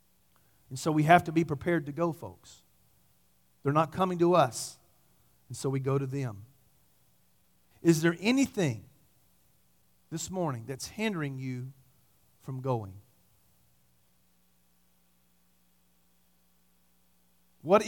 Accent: American